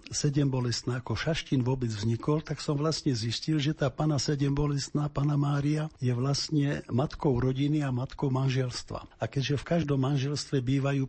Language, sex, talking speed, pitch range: Slovak, male, 150 wpm, 120-145 Hz